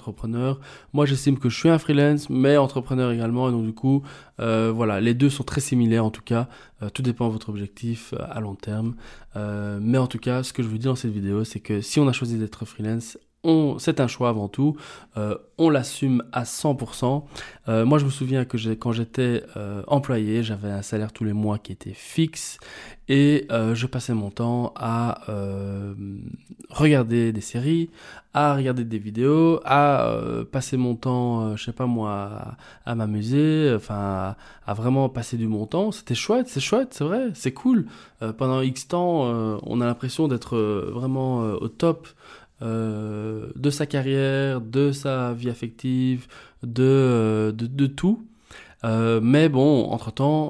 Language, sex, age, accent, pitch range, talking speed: French, male, 20-39, French, 110-135 Hz, 190 wpm